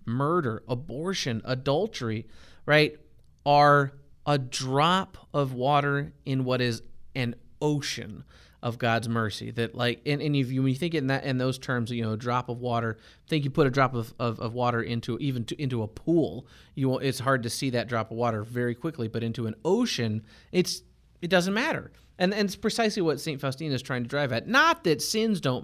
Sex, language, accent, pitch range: male, English, American, 120-160 Hz